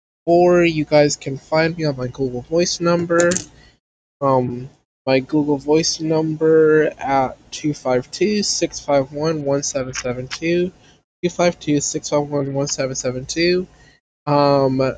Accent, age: American, 20-39